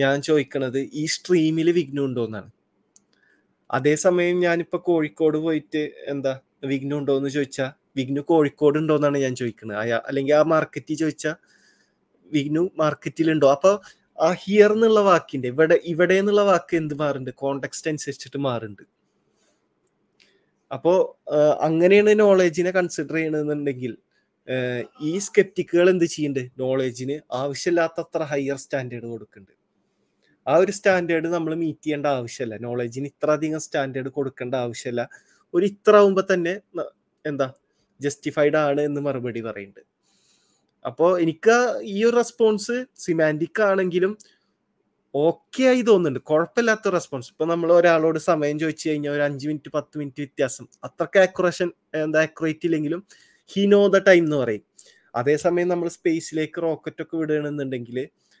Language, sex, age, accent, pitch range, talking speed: Malayalam, male, 20-39, native, 140-175 Hz, 115 wpm